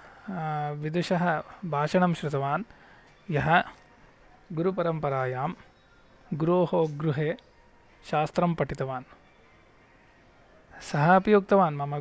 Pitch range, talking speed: 145-180 Hz, 50 wpm